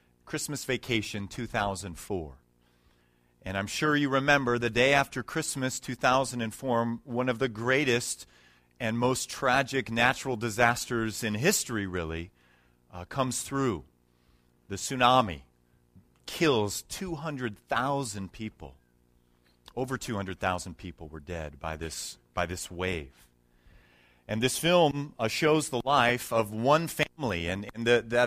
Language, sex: English, male